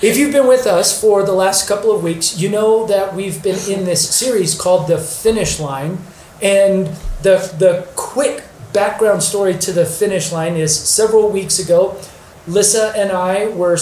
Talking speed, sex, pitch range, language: 180 wpm, male, 170-210 Hz, English